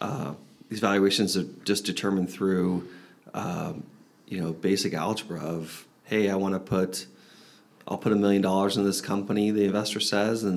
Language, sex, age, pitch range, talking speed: English, male, 30-49, 95-105 Hz, 170 wpm